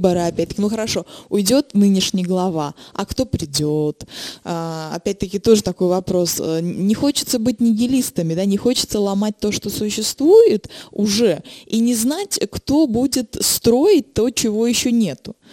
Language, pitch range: Russian, 190-260 Hz